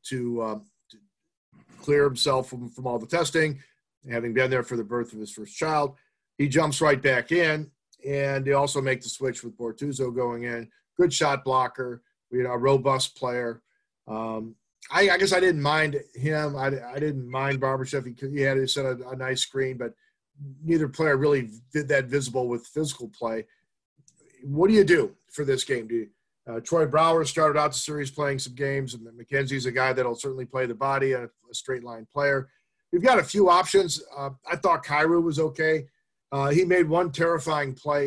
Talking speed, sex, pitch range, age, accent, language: 200 wpm, male, 125-150 Hz, 40-59, American, English